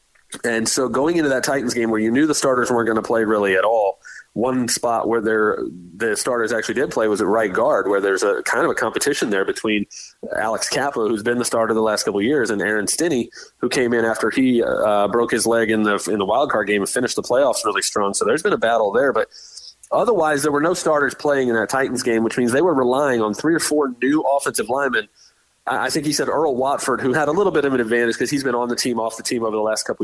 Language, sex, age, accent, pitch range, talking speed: English, male, 30-49, American, 110-145 Hz, 265 wpm